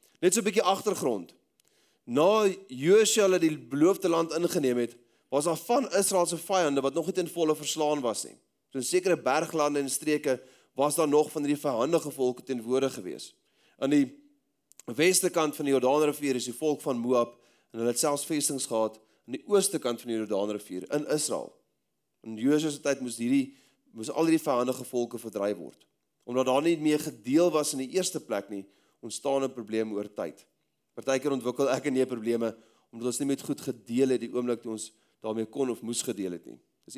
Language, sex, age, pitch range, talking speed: English, male, 30-49, 125-160 Hz, 190 wpm